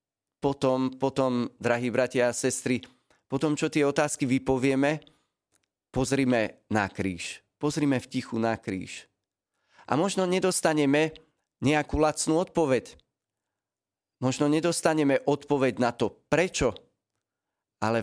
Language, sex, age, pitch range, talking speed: Slovak, male, 40-59, 115-140 Hz, 105 wpm